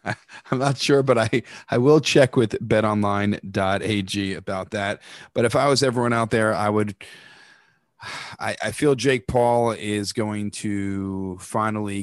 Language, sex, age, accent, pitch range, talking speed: English, male, 30-49, American, 100-120 Hz, 150 wpm